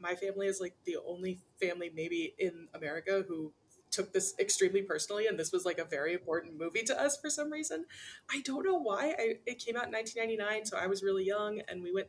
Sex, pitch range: female, 170-220 Hz